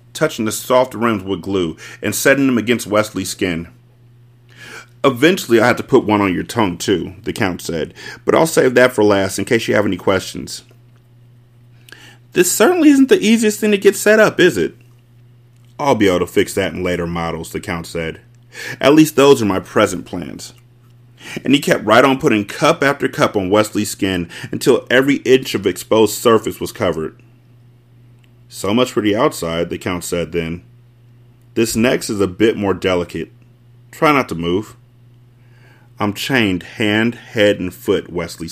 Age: 30-49